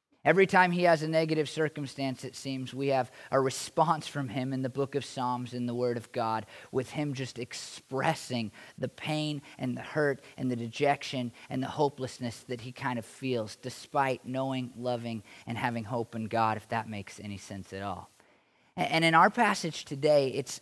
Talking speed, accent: 190 wpm, American